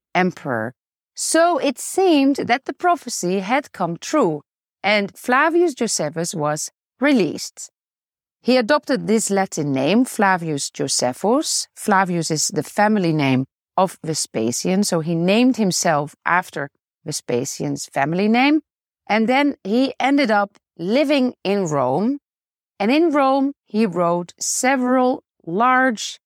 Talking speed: 120 wpm